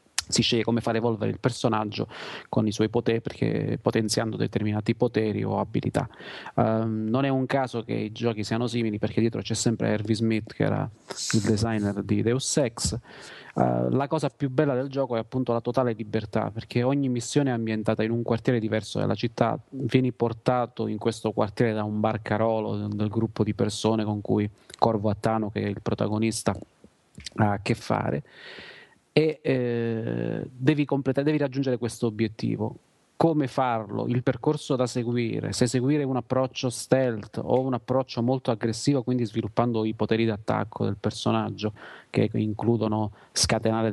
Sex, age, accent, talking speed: male, 30-49, native, 160 wpm